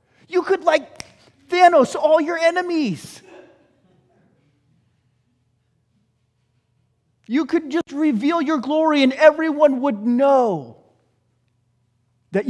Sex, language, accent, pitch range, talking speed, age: male, English, American, 120-185 Hz, 85 wpm, 40-59